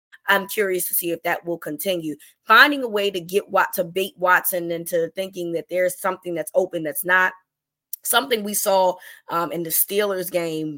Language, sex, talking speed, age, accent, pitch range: English, female, 190 wpm, 20-39, American, 170-195 Hz